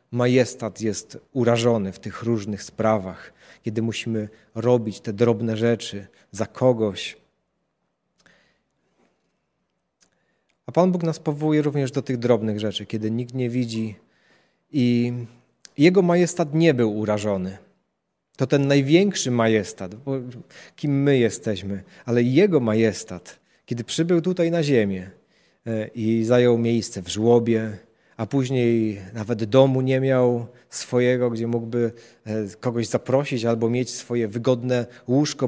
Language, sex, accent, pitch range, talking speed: Polish, male, native, 110-130 Hz, 120 wpm